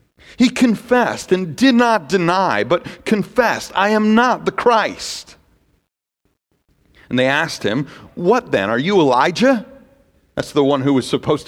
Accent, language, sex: American, English, male